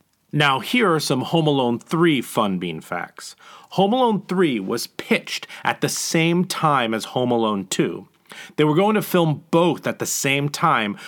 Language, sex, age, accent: English, male, 30-49, American